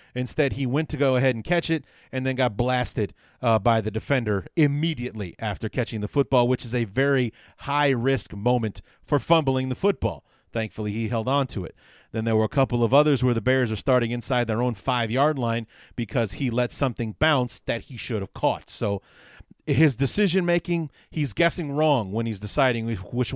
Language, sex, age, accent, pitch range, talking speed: English, male, 30-49, American, 115-145 Hz, 195 wpm